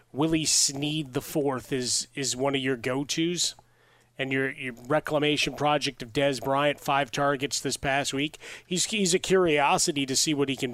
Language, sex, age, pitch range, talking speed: English, male, 30-49, 140-175 Hz, 185 wpm